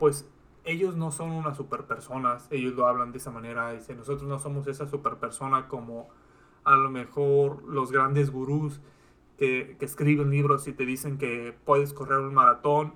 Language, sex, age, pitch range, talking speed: Spanish, male, 30-49, 135-155 Hz, 170 wpm